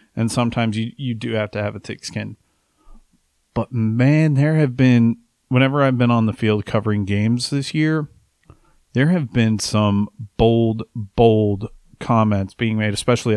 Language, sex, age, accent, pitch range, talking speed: English, male, 30-49, American, 105-120 Hz, 160 wpm